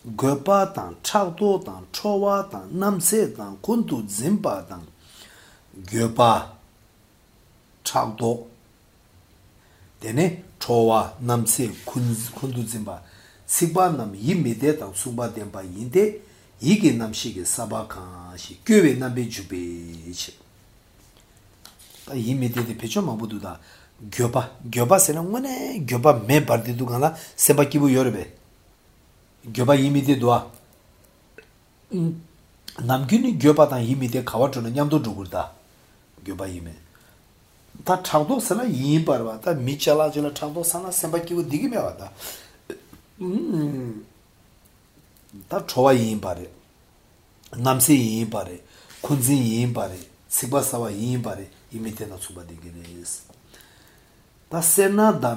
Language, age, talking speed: English, 60-79, 65 wpm